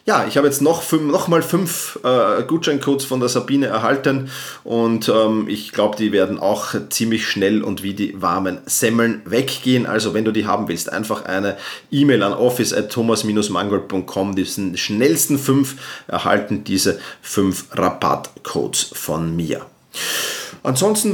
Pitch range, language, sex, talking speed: 120-160 Hz, German, male, 150 wpm